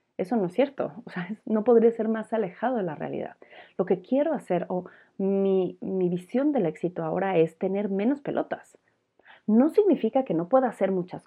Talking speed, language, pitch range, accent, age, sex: 190 wpm, Spanish, 185-255 Hz, Mexican, 30-49, female